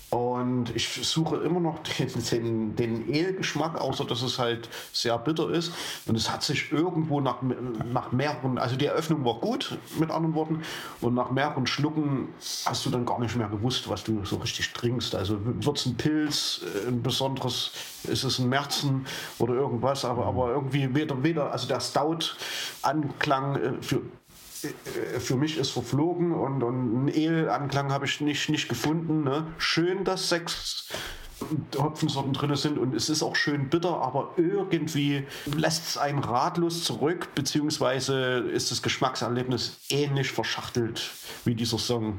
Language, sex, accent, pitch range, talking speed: German, male, German, 120-150 Hz, 160 wpm